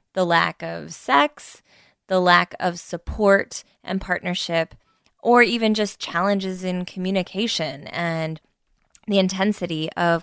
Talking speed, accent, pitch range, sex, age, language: 115 wpm, American, 175-215 Hz, female, 20-39, English